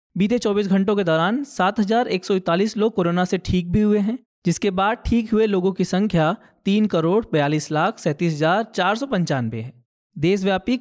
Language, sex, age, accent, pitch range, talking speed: Hindi, male, 20-39, native, 170-215 Hz, 150 wpm